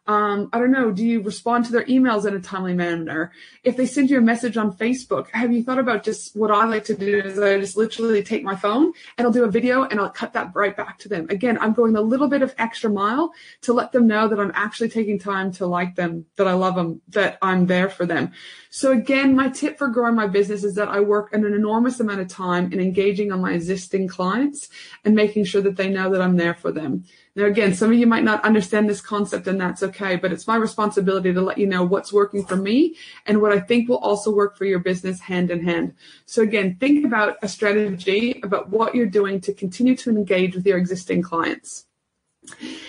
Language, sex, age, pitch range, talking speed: English, female, 20-39, 195-230 Hz, 240 wpm